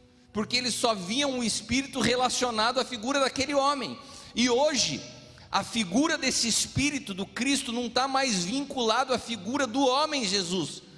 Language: Portuguese